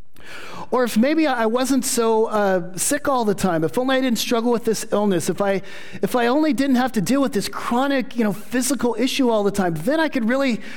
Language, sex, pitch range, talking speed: English, male, 185-250 Hz, 235 wpm